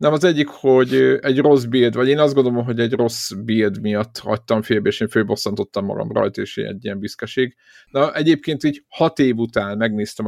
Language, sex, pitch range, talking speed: Hungarian, male, 105-130 Hz, 205 wpm